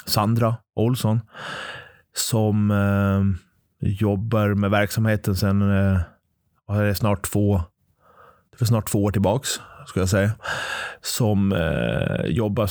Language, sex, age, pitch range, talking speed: English, male, 30-49, 95-110 Hz, 120 wpm